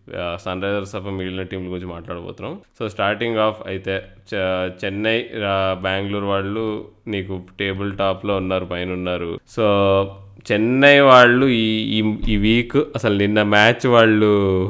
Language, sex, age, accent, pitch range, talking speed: Telugu, male, 20-39, native, 100-120 Hz, 125 wpm